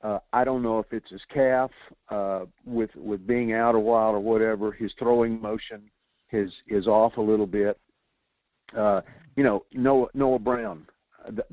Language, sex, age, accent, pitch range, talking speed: English, male, 50-69, American, 110-130 Hz, 170 wpm